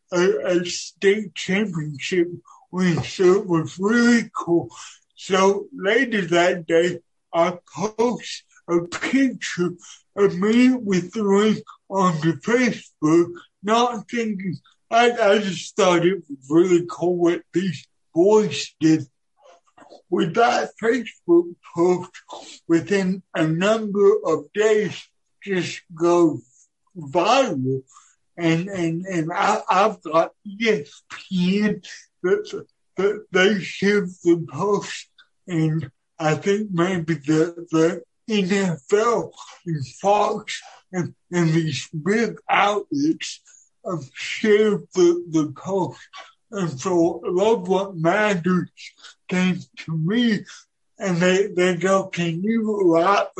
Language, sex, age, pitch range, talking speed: English, male, 60-79, 170-210 Hz, 110 wpm